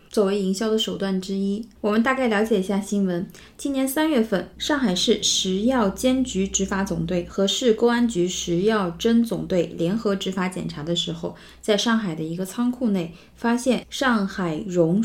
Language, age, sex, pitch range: Chinese, 20-39, female, 180-220 Hz